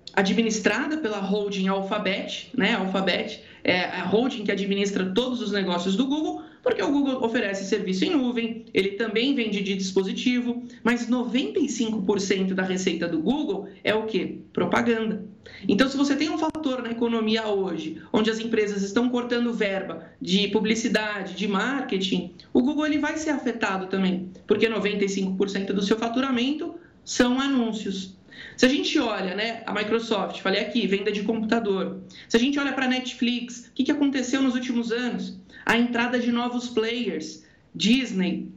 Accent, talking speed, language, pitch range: Brazilian, 155 wpm, Portuguese, 200-255 Hz